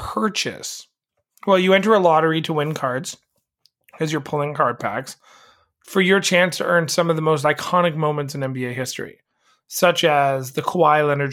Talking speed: 175 wpm